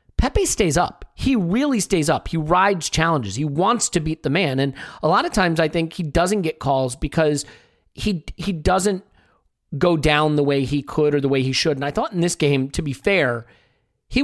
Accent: American